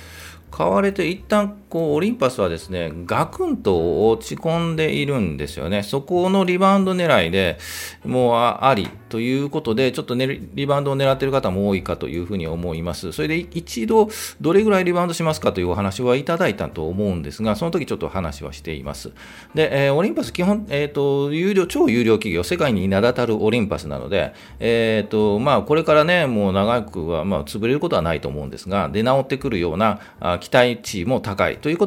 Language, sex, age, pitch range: Japanese, male, 40-59, 95-150 Hz